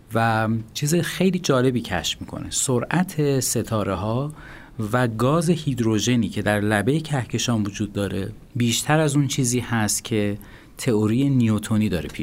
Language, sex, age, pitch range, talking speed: Persian, male, 40-59, 105-130 Hz, 135 wpm